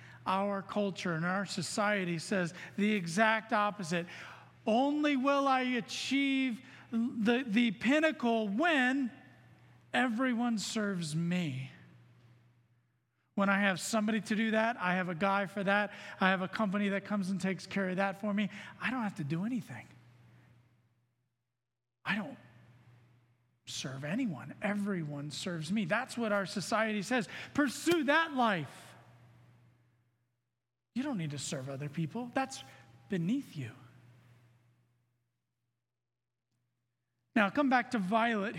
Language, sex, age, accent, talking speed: English, male, 40-59, American, 130 wpm